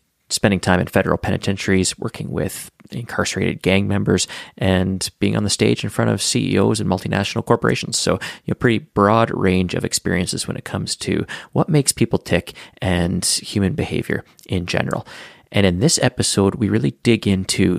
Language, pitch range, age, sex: English, 95-115 Hz, 30-49, male